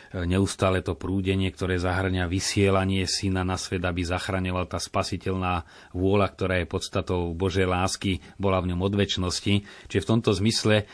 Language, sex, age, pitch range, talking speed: Slovak, male, 30-49, 95-110 Hz, 150 wpm